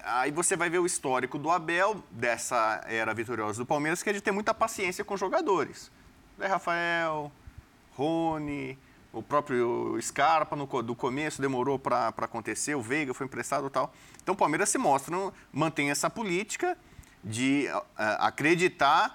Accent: Brazilian